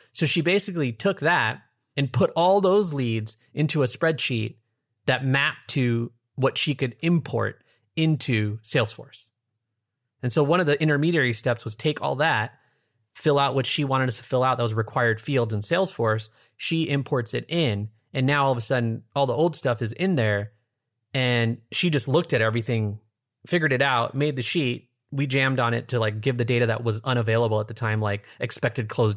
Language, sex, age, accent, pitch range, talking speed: English, male, 30-49, American, 110-135 Hz, 195 wpm